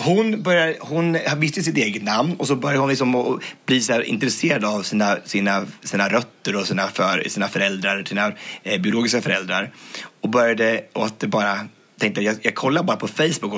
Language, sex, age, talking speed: English, male, 30-49, 170 wpm